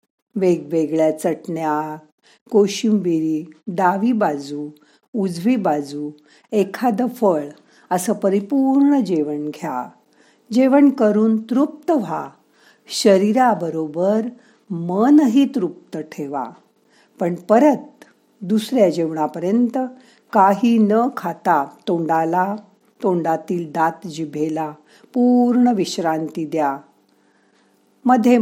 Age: 50-69